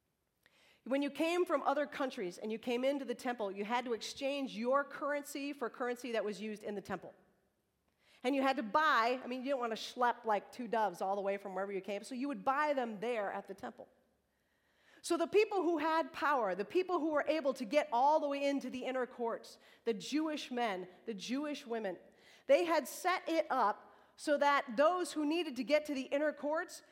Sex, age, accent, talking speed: female, 40-59, American, 225 wpm